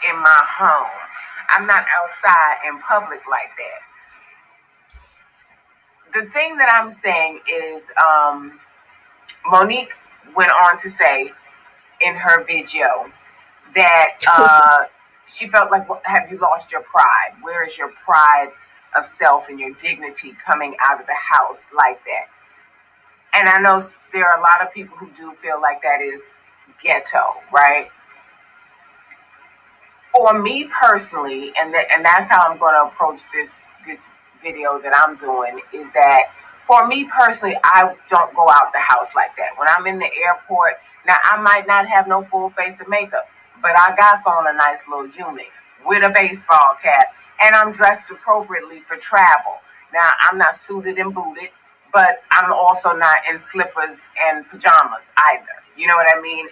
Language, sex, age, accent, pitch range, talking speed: English, female, 30-49, American, 145-200 Hz, 160 wpm